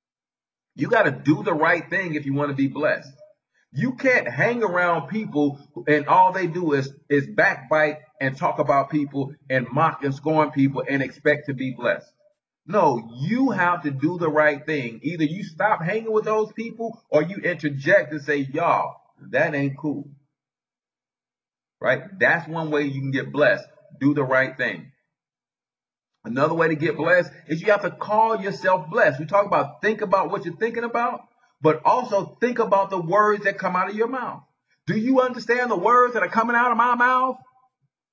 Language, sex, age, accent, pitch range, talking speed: English, male, 40-59, American, 140-210 Hz, 190 wpm